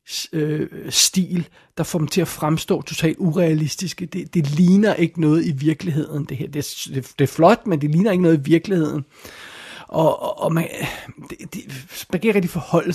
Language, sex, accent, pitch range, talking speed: Danish, male, native, 150-180 Hz, 190 wpm